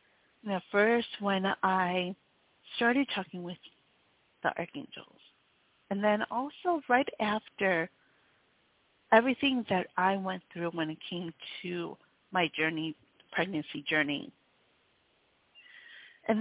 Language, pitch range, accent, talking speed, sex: English, 190-270 Hz, American, 100 wpm, female